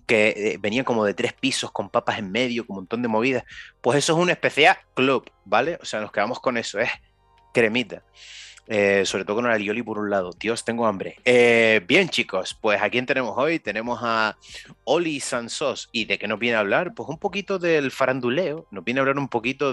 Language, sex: Spanish, male